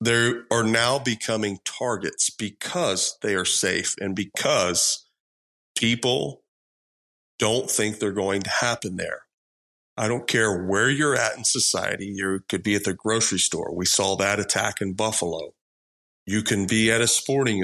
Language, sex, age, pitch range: English, male, 40-59, 95-120 Hz